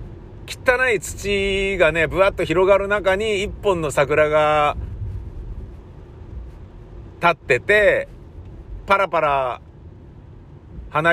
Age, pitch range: 50-69, 100-170 Hz